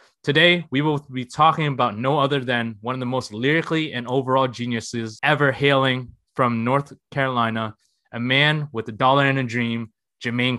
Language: English